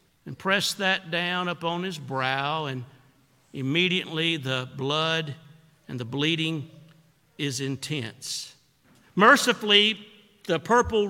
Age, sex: 50-69, male